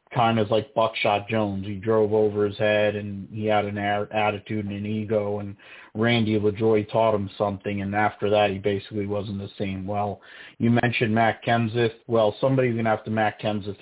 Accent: American